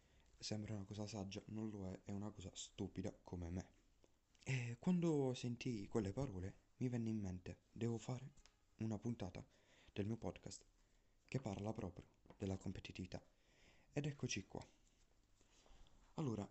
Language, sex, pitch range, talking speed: Italian, male, 95-125 Hz, 140 wpm